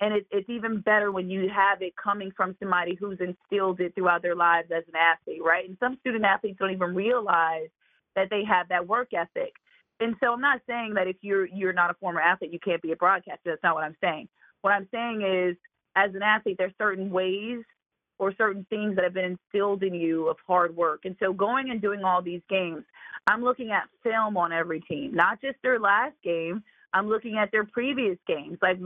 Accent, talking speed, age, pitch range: American, 220 wpm, 30-49, 185-230 Hz